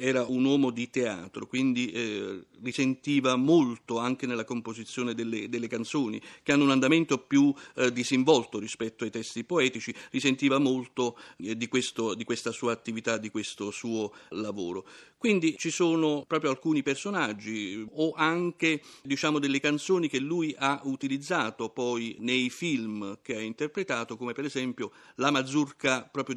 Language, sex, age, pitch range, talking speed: Italian, male, 50-69, 115-145 Hz, 150 wpm